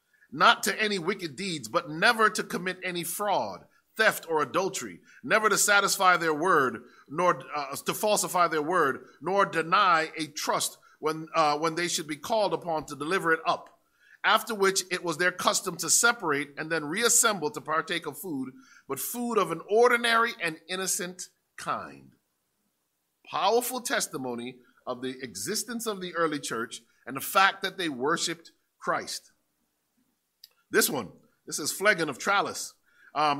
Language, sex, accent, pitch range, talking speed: English, male, American, 155-215 Hz, 160 wpm